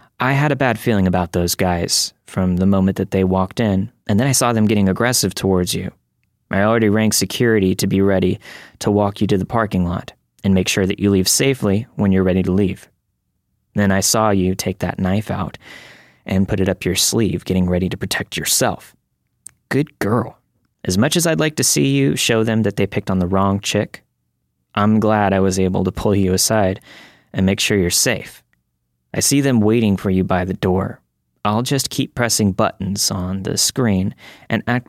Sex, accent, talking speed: male, American, 210 wpm